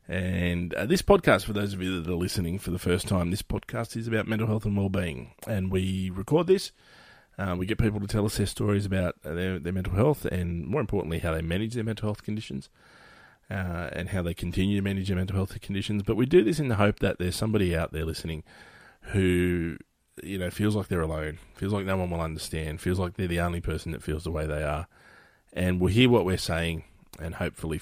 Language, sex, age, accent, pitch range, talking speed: English, male, 30-49, Australian, 80-95 Hz, 235 wpm